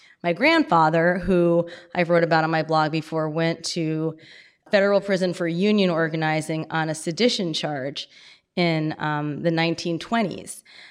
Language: English